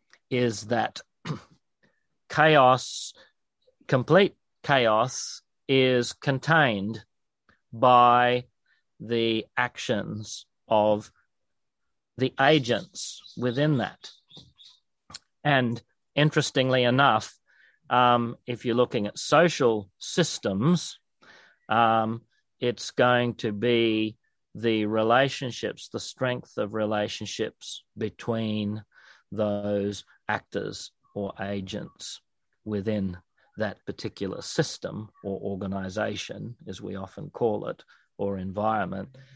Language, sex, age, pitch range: English, male, 40-59, 100-125 Hz